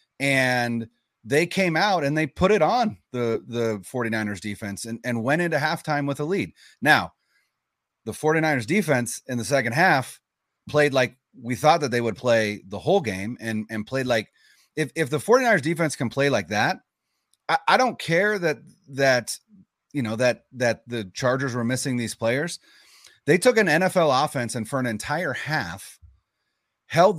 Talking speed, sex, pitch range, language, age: 175 wpm, male, 120-155 Hz, English, 30-49